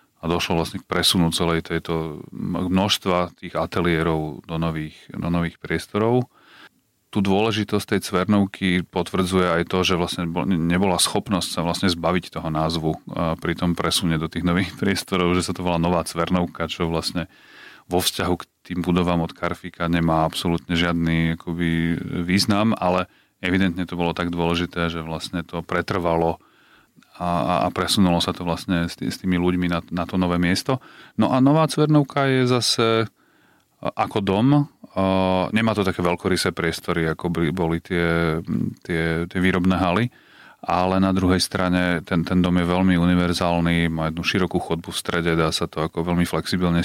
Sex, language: male, Slovak